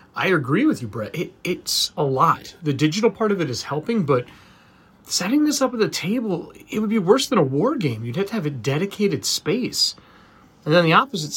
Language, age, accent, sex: English, 30-49, American, male